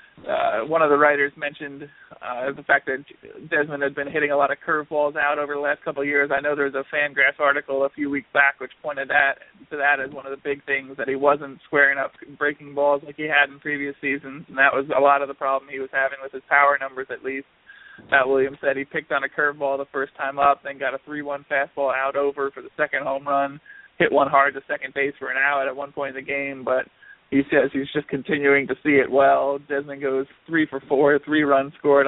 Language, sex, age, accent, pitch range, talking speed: English, male, 20-39, American, 135-145 Hz, 245 wpm